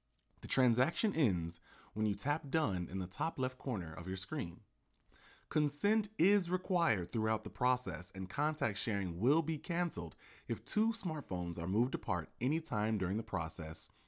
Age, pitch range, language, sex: 30-49, 95-145 Hz, English, male